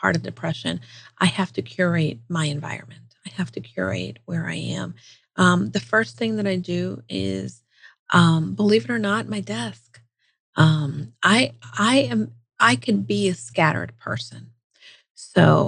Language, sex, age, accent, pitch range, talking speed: English, female, 40-59, American, 135-195 Hz, 160 wpm